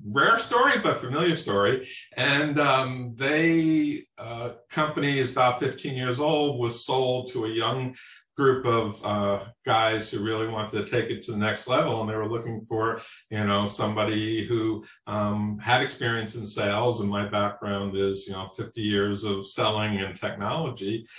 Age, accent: 50-69, American